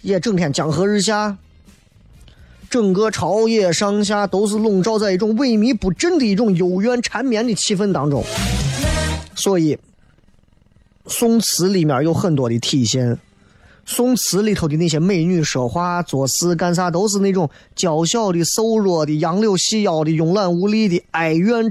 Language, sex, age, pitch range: Chinese, male, 20-39, 145-205 Hz